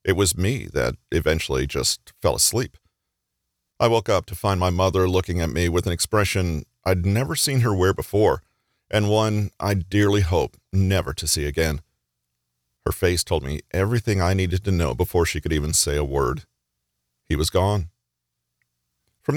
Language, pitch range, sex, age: English, 75-105 Hz, male, 40-59